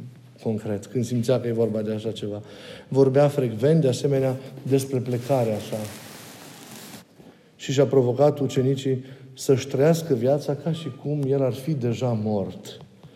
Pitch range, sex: 115-135 Hz, male